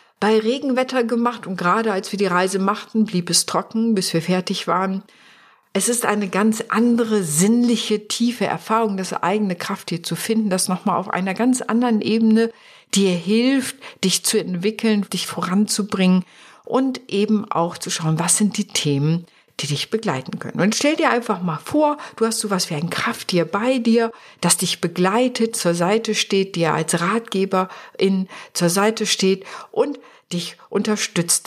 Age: 50-69